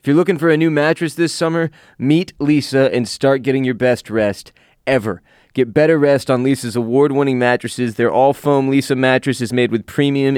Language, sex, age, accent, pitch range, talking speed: English, male, 20-39, American, 120-145 Hz, 190 wpm